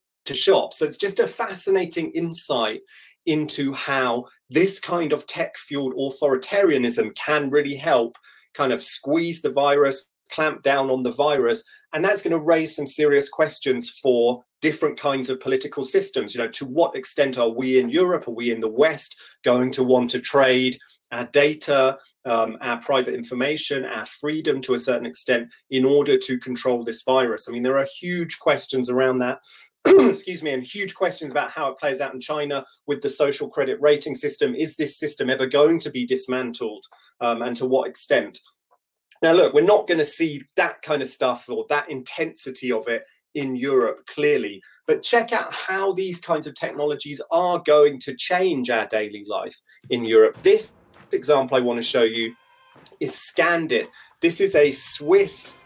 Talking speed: 180 wpm